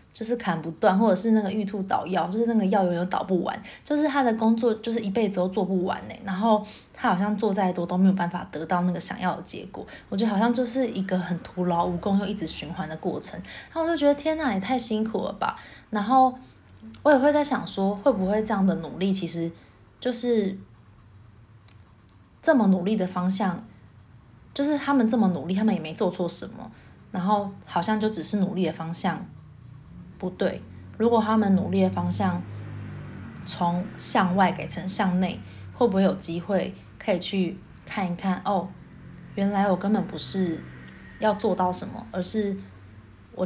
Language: Chinese